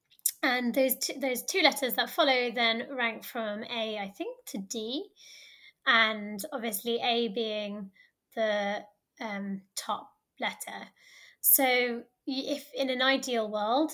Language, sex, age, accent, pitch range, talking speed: English, female, 20-39, British, 210-270 Hz, 130 wpm